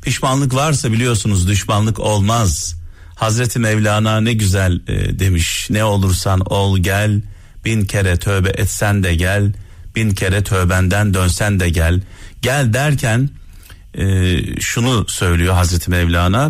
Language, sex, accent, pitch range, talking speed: Turkish, male, native, 90-115 Hz, 125 wpm